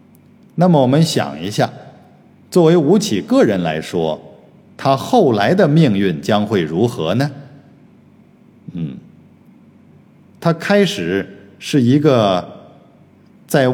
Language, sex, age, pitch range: Chinese, male, 50-69, 95-155 Hz